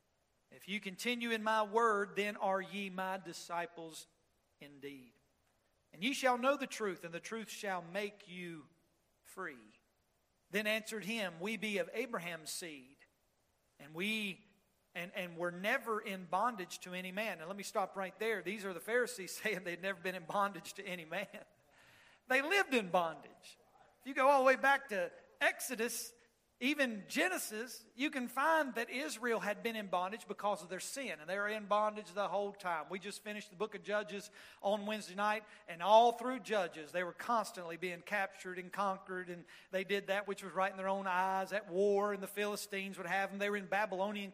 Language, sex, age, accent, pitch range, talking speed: English, male, 50-69, American, 185-225 Hz, 195 wpm